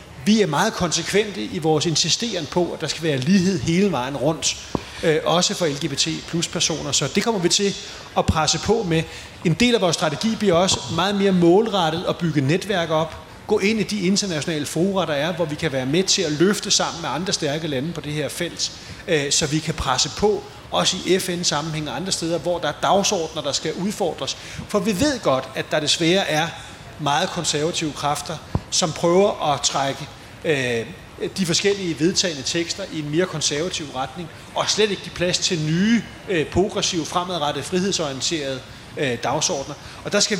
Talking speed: 190 wpm